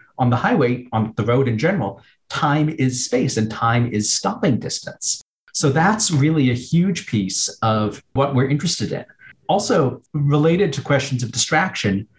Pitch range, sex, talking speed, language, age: 115-145 Hz, male, 160 wpm, English, 40-59